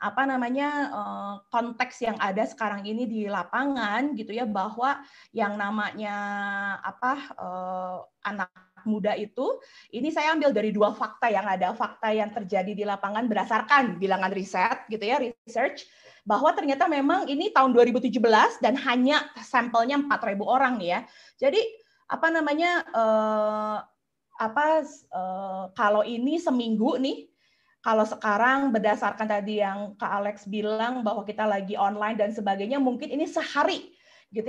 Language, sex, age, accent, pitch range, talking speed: Indonesian, female, 20-39, native, 205-260 Hz, 130 wpm